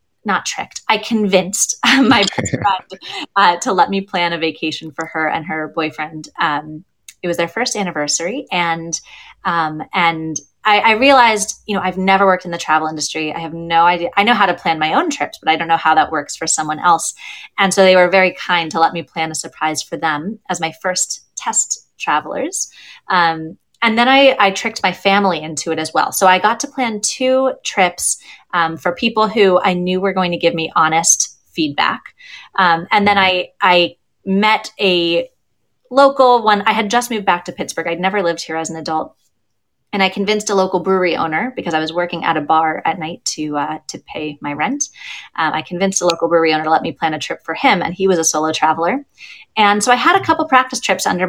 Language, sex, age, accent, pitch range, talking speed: English, female, 30-49, American, 160-210 Hz, 220 wpm